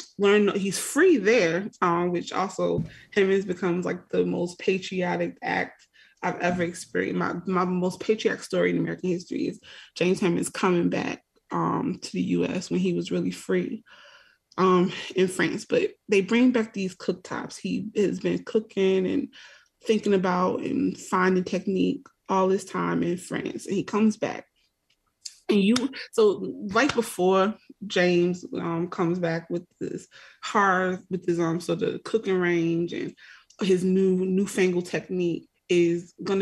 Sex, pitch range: female, 175-200 Hz